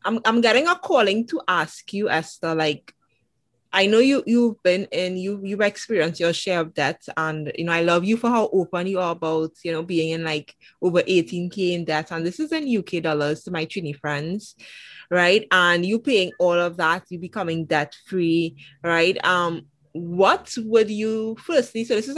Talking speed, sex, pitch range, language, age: 200 wpm, female, 165-215 Hz, English, 20-39